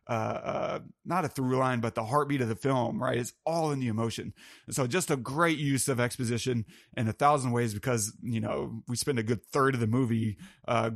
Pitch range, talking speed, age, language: 115-140 Hz, 230 wpm, 30-49, English